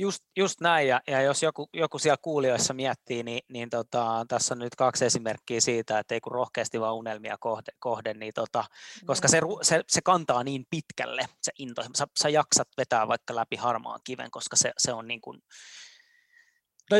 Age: 20-39